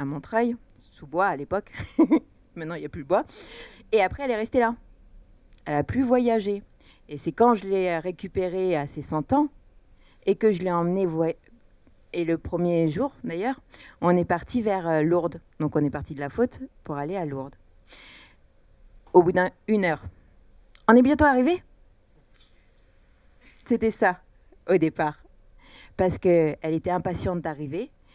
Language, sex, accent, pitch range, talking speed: French, female, French, 155-200 Hz, 165 wpm